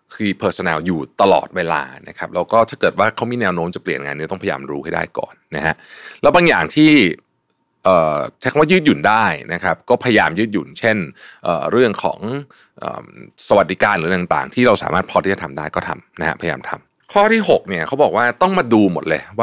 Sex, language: male, Thai